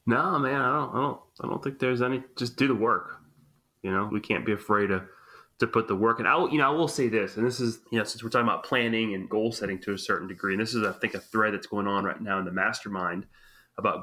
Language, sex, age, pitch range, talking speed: English, male, 30-49, 100-120 Hz, 285 wpm